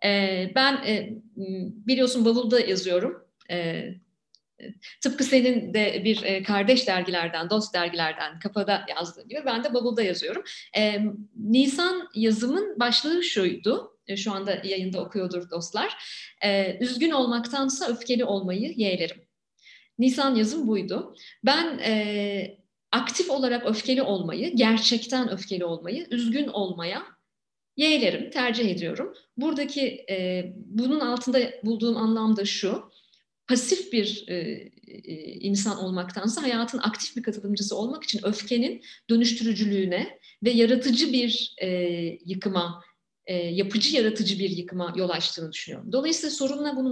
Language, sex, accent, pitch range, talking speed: Turkish, female, native, 195-255 Hz, 110 wpm